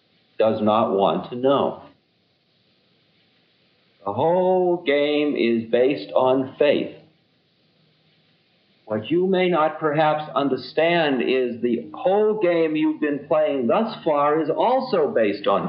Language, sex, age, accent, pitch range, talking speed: English, male, 50-69, American, 130-185 Hz, 120 wpm